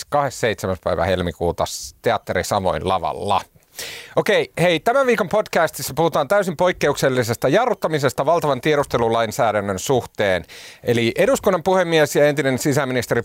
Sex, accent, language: male, native, Finnish